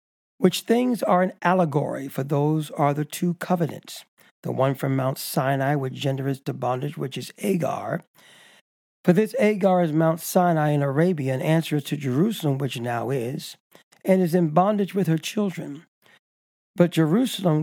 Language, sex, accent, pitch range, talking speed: English, male, American, 140-180 Hz, 160 wpm